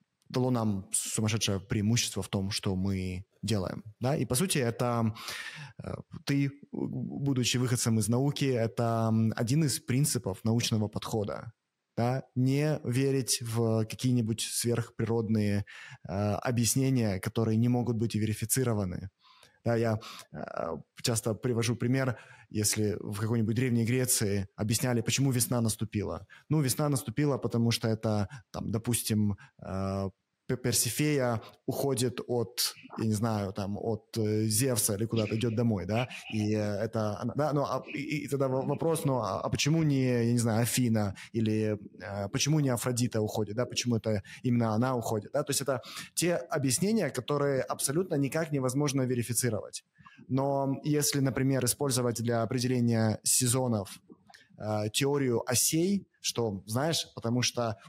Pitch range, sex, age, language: 110-130 Hz, male, 20-39, Russian